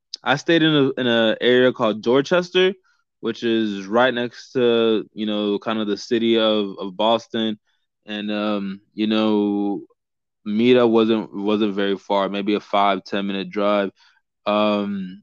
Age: 20-39